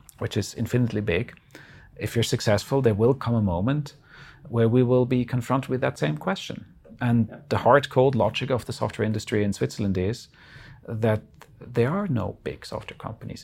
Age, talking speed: 40-59, 180 wpm